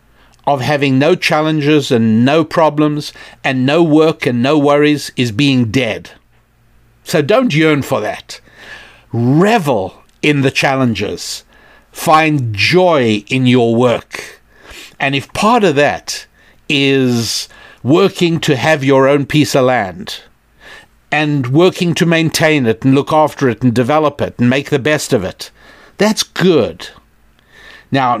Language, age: English, 60-79